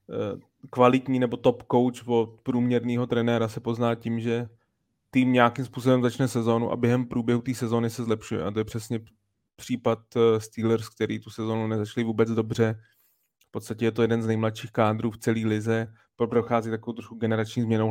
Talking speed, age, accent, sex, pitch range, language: 170 wpm, 20-39, native, male, 110-125 Hz, Czech